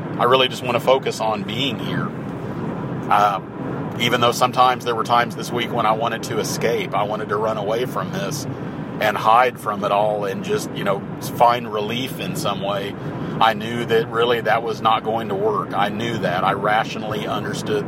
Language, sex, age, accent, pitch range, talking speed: English, male, 40-59, American, 115-135 Hz, 200 wpm